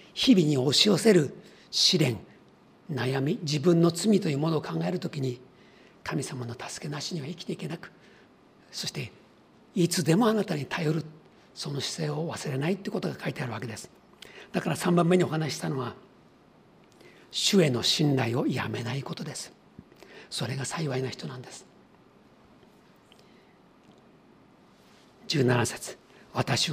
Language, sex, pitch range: Japanese, male, 145-190 Hz